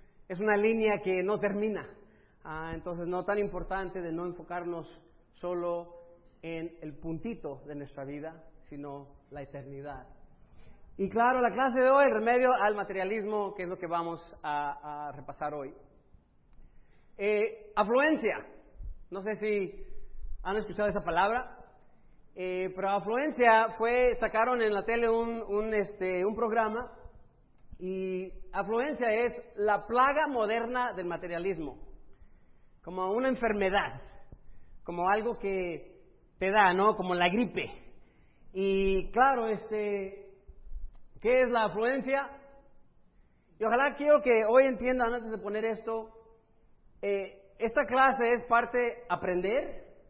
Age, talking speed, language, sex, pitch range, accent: 40-59, 130 wpm, Spanish, male, 180-230 Hz, Mexican